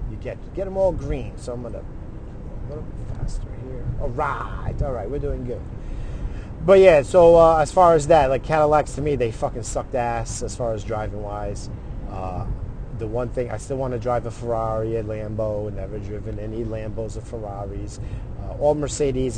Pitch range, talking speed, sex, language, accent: 105-120 Hz, 205 wpm, male, English, American